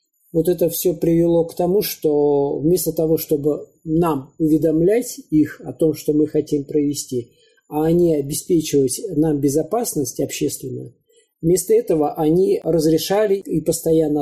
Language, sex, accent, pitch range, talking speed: Russian, male, native, 150-180 Hz, 130 wpm